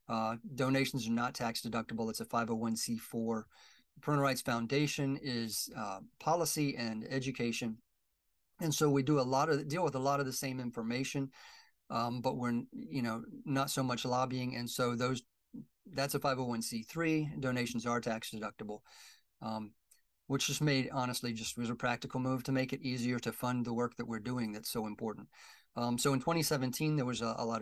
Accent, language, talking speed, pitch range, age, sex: American, English, 180 wpm, 115-135 Hz, 40-59, male